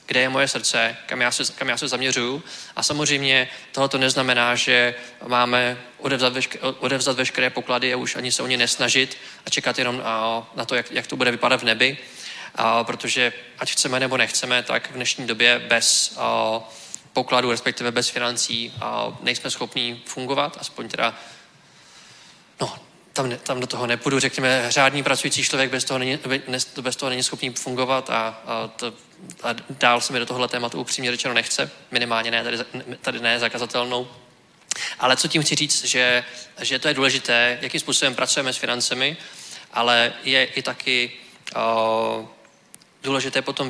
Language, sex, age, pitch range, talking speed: Czech, male, 20-39, 120-130 Hz, 165 wpm